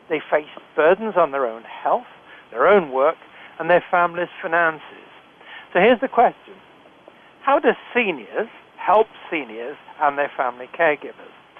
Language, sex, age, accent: English, male, 60-79, British